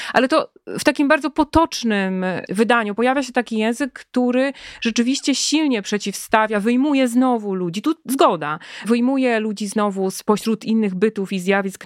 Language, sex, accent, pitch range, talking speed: Polish, female, native, 210-265 Hz, 140 wpm